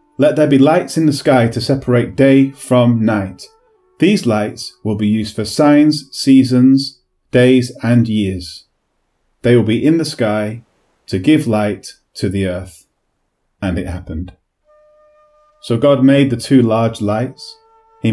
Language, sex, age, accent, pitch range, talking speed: English, male, 30-49, British, 110-155 Hz, 150 wpm